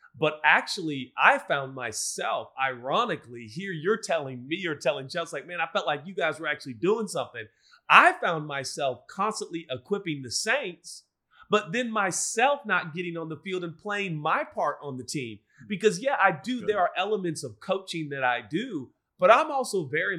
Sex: male